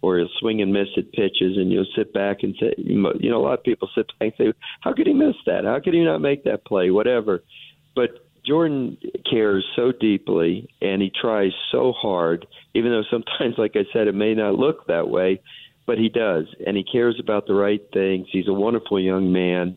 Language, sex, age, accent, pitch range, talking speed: English, male, 50-69, American, 95-105 Hz, 220 wpm